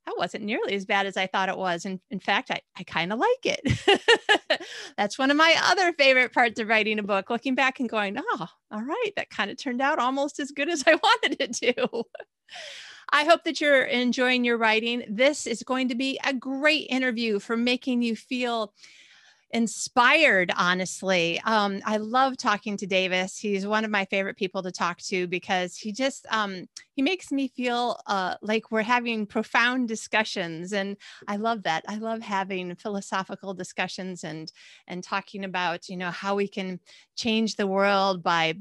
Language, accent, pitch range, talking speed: English, American, 195-260 Hz, 190 wpm